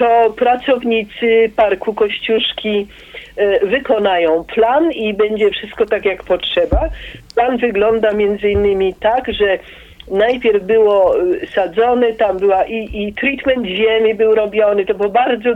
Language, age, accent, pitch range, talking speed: Polish, 50-69, native, 195-235 Hz, 125 wpm